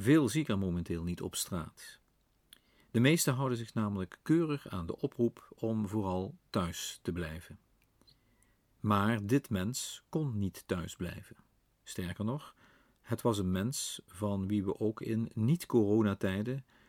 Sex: male